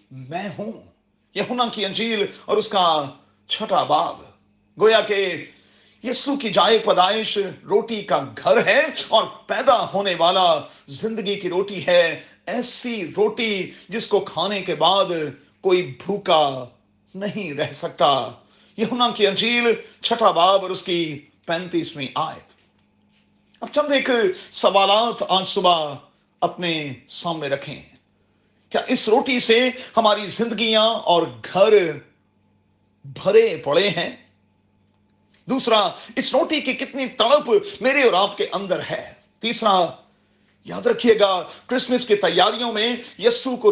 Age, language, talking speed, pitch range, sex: 40-59, Urdu, 130 wpm, 155-225 Hz, male